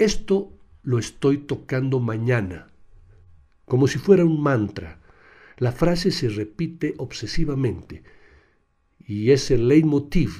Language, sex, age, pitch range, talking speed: Spanish, male, 60-79, 105-145 Hz, 110 wpm